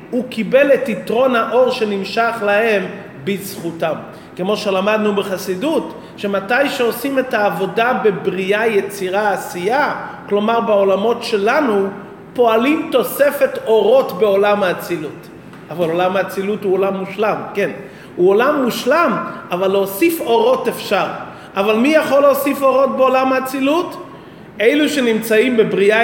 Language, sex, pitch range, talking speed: Hebrew, male, 195-245 Hz, 115 wpm